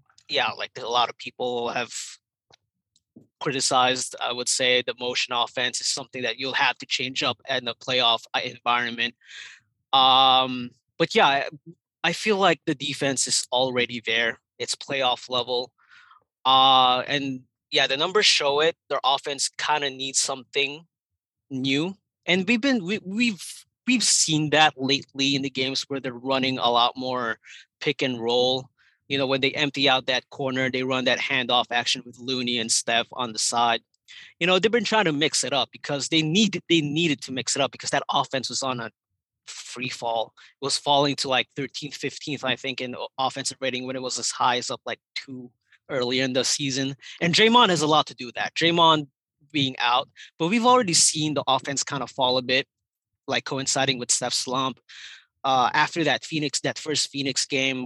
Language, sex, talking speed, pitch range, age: English, male, 190 wpm, 125-150 Hz, 20-39